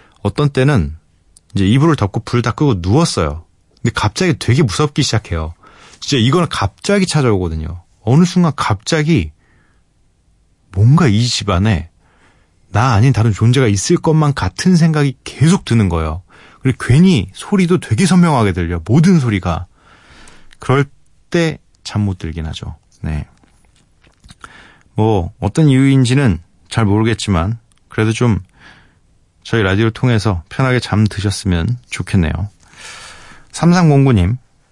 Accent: native